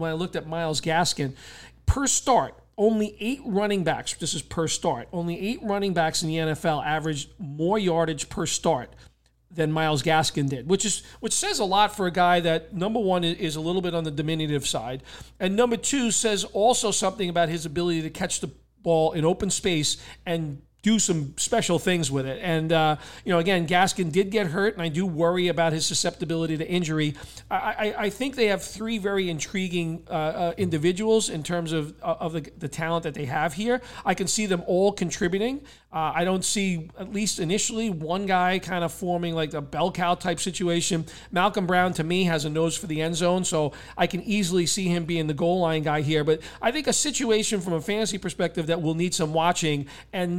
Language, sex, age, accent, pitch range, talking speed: English, male, 40-59, American, 160-195 Hz, 210 wpm